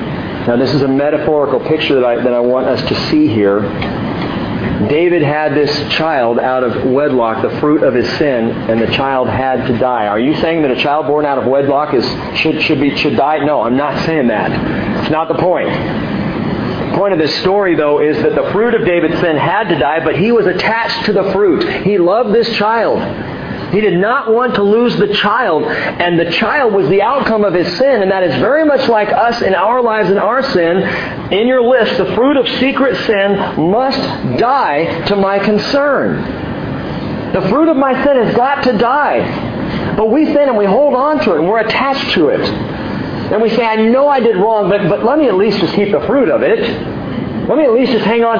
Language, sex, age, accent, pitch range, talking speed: English, male, 40-59, American, 150-230 Hz, 220 wpm